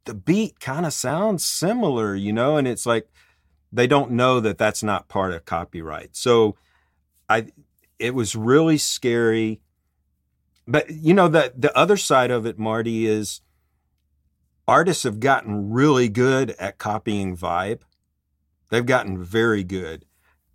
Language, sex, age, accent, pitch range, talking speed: English, male, 50-69, American, 85-125 Hz, 145 wpm